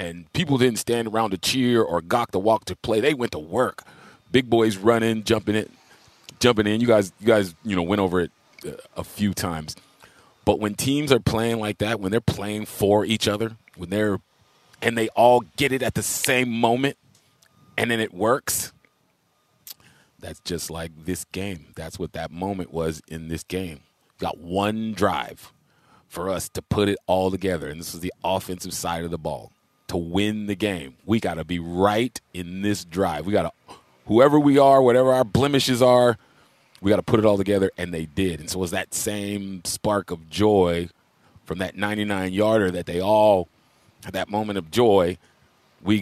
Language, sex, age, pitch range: English, male, 30-49, 90-110 Hz